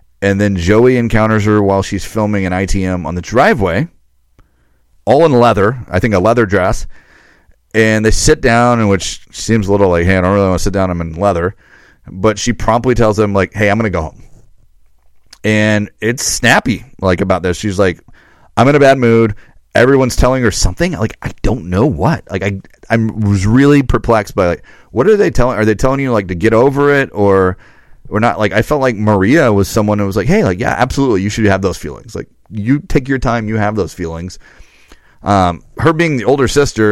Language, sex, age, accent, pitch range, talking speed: English, male, 30-49, American, 95-120 Hz, 215 wpm